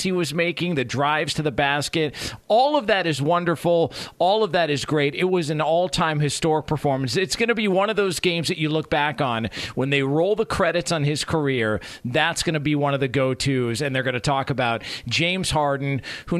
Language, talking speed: English, 225 wpm